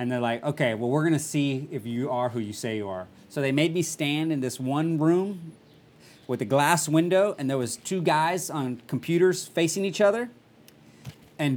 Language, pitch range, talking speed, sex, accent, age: English, 120-155 Hz, 205 wpm, male, American, 30-49